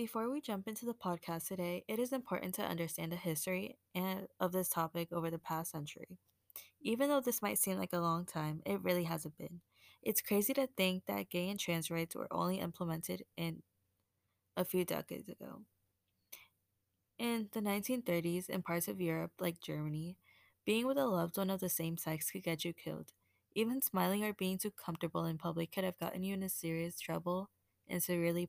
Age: 10-29